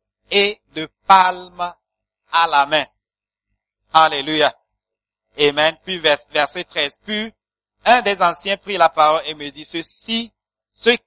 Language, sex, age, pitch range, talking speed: English, male, 50-69, 140-225 Hz, 130 wpm